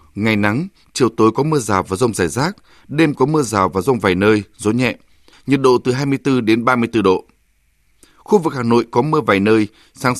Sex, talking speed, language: male, 220 wpm, Vietnamese